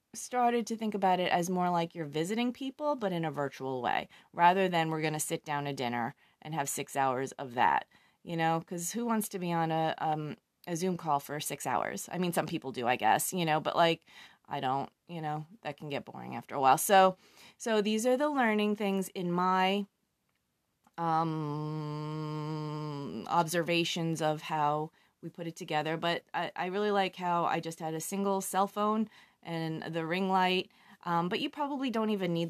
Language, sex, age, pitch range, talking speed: English, female, 30-49, 155-190 Hz, 205 wpm